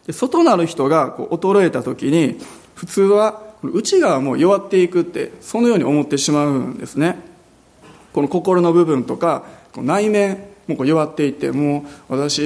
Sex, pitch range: male, 145-200 Hz